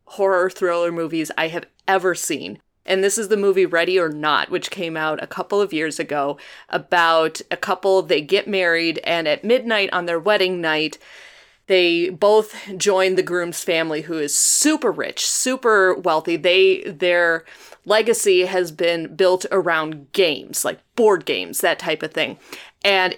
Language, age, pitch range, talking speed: English, 30-49, 170-210 Hz, 165 wpm